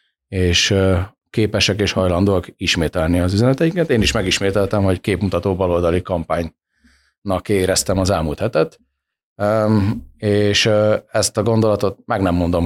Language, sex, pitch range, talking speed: Hungarian, male, 90-105 Hz, 120 wpm